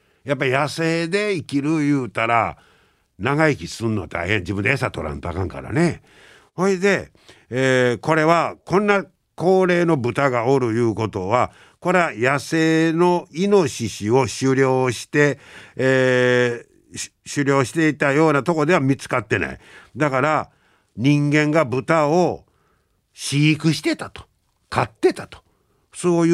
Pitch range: 105-165 Hz